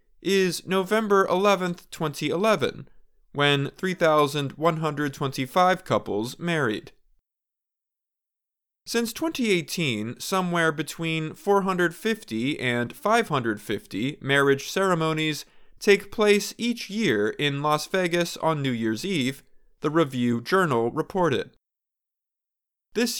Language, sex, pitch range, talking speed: English, male, 150-205 Hz, 85 wpm